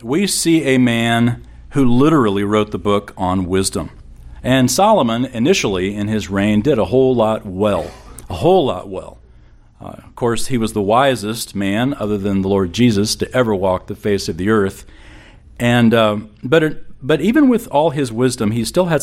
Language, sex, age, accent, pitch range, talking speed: English, male, 40-59, American, 100-130 Hz, 190 wpm